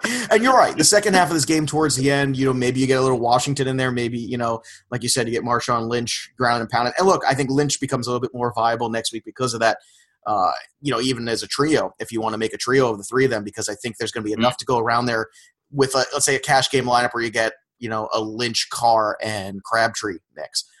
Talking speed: 290 wpm